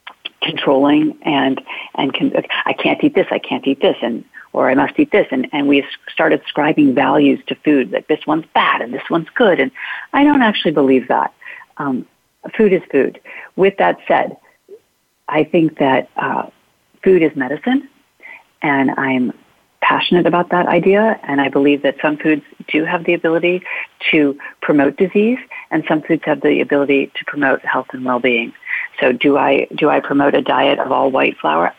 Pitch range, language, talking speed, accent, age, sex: 145-205 Hz, English, 180 wpm, American, 40-59, female